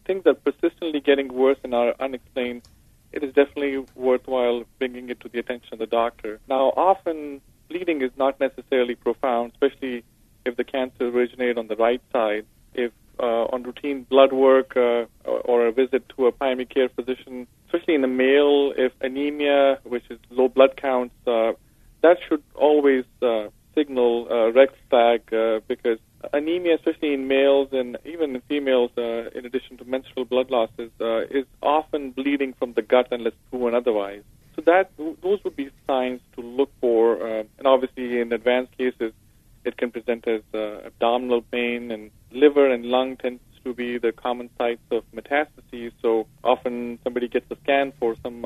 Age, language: 40-59, English